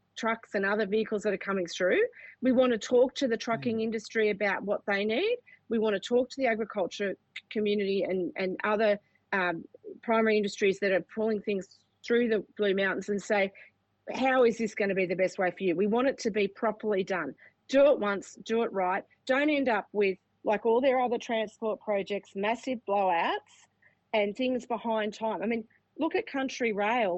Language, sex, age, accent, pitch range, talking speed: English, female, 40-59, Australian, 200-235 Hz, 200 wpm